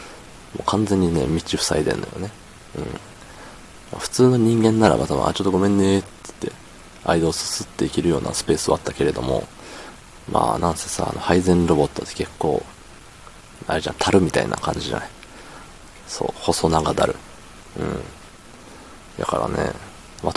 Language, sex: Japanese, male